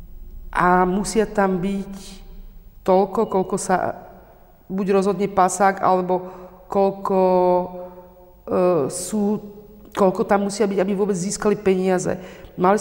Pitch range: 180-210 Hz